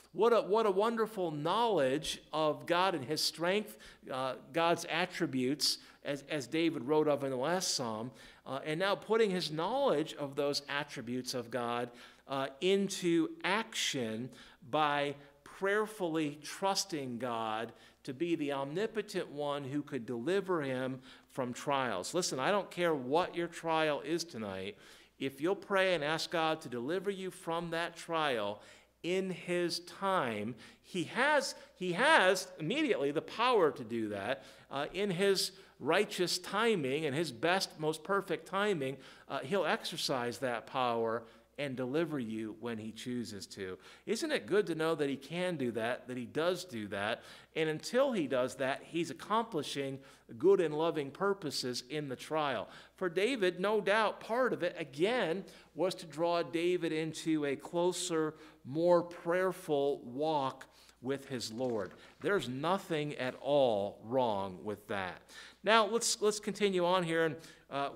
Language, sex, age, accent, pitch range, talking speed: English, male, 50-69, American, 135-180 Hz, 155 wpm